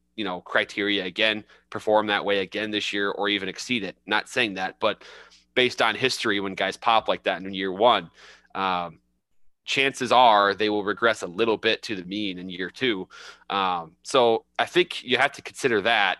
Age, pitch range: 20-39, 95-110 Hz